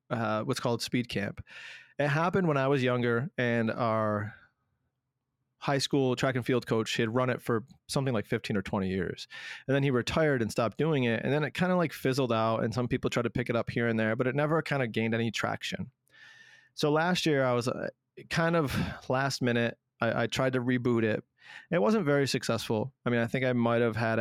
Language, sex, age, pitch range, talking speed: English, male, 30-49, 115-130 Hz, 230 wpm